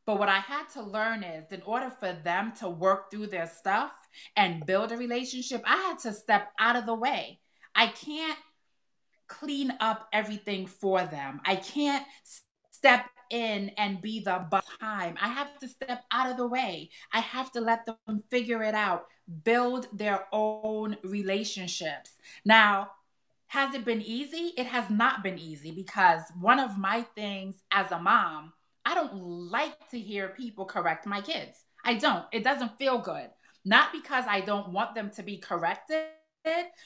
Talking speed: 170 wpm